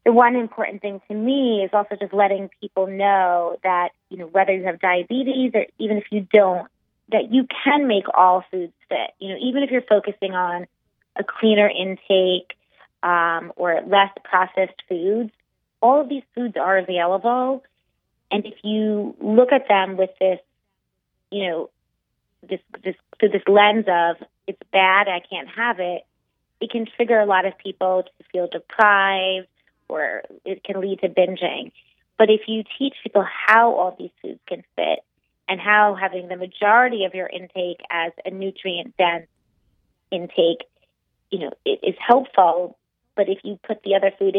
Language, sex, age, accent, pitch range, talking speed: English, female, 30-49, American, 185-220 Hz, 170 wpm